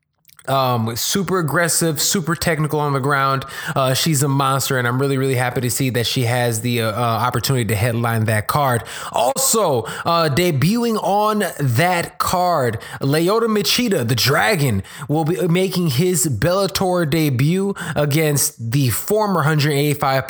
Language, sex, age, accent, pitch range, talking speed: English, male, 20-39, American, 140-185 Hz, 145 wpm